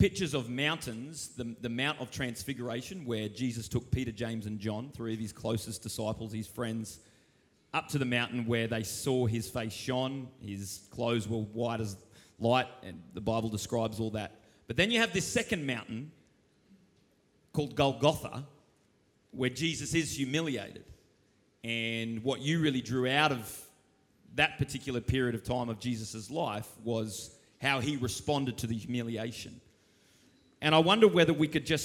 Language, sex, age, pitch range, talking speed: English, male, 30-49, 115-140 Hz, 160 wpm